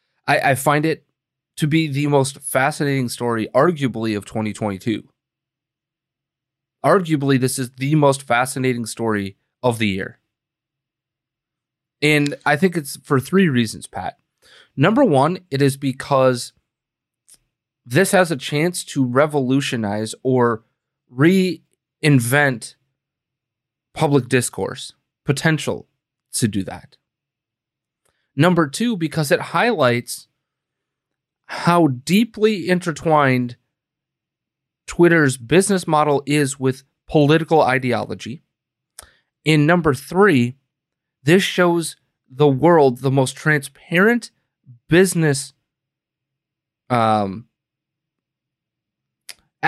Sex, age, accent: male, 30-49, American